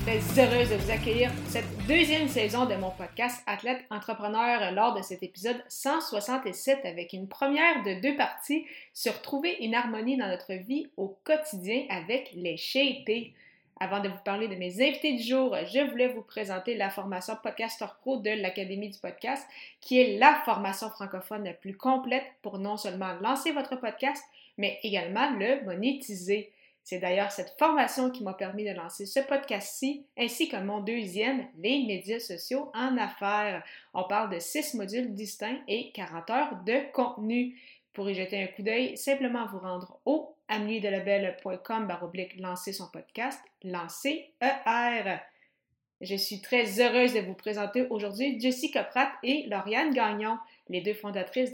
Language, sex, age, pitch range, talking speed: French, female, 30-49, 195-265 Hz, 165 wpm